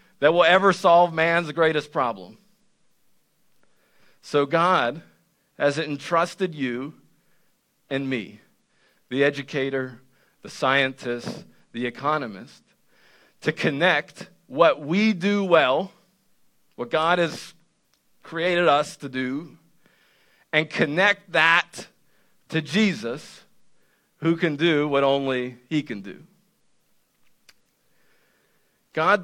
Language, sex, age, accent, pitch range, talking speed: English, male, 50-69, American, 130-175 Hz, 95 wpm